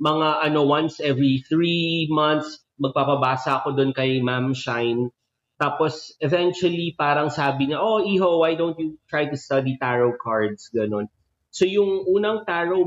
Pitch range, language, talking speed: 125-160 Hz, Filipino, 150 wpm